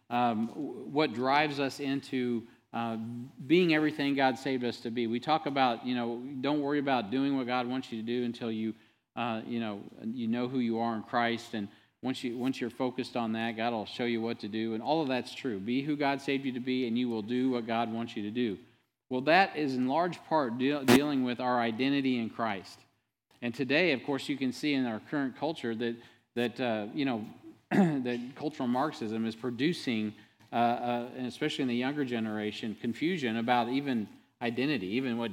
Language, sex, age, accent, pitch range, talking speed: English, male, 40-59, American, 115-140 Hz, 210 wpm